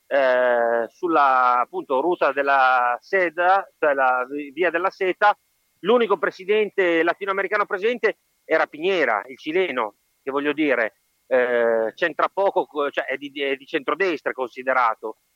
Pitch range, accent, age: 140-195 Hz, native, 40-59